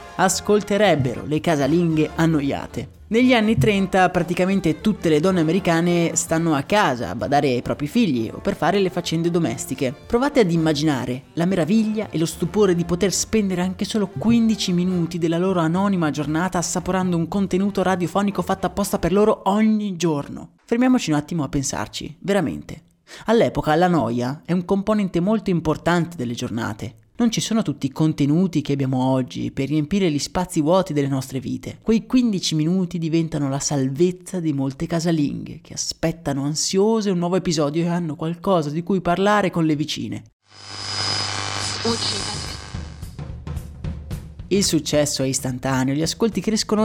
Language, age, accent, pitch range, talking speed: Italian, 30-49, native, 140-190 Hz, 150 wpm